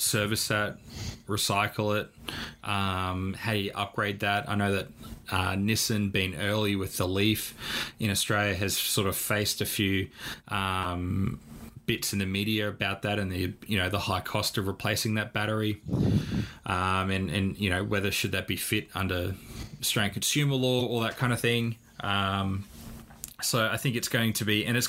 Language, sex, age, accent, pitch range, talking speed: English, male, 20-39, Australian, 95-110 Hz, 180 wpm